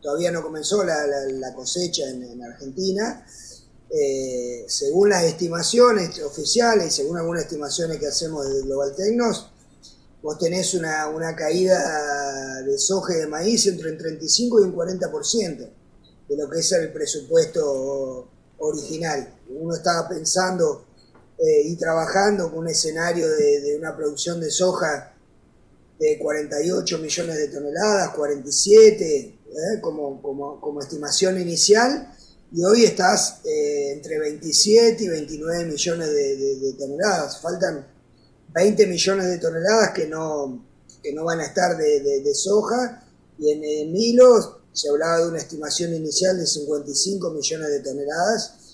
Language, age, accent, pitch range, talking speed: Portuguese, 30-49, Argentinian, 145-200 Hz, 140 wpm